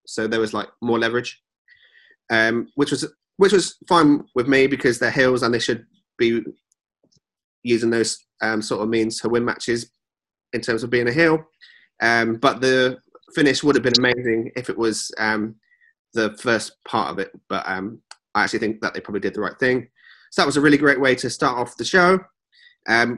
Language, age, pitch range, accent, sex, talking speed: English, 30-49, 115-145 Hz, British, male, 200 wpm